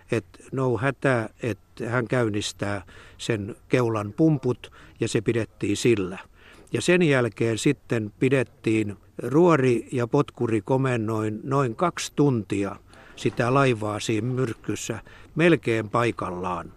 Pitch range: 110-135 Hz